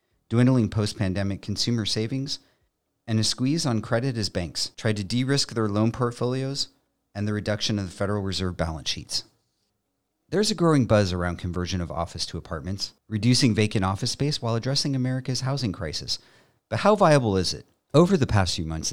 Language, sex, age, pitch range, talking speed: English, male, 40-59, 95-125 Hz, 175 wpm